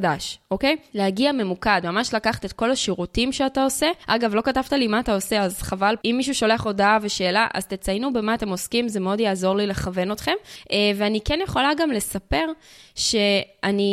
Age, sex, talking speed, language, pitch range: 20-39, female, 180 wpm, Hebrew, 195-245 Hz